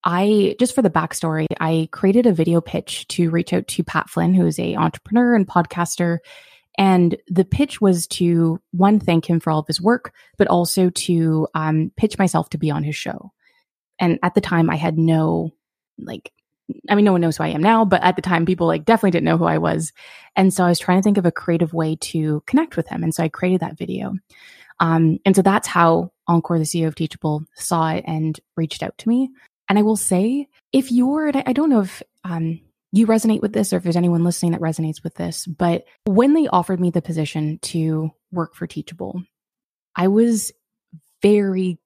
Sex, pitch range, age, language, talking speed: female, 165-200 Hz, 20-39, English, 220 wpm